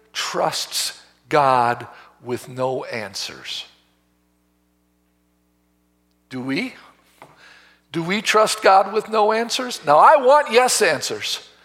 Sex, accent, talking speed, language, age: male, American, 100 wpm, English, 60-79